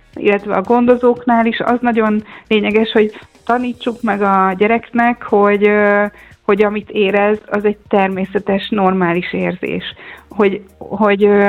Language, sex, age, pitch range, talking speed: Hungarian, female, 30-49, 190-230 Hz, 120 wpm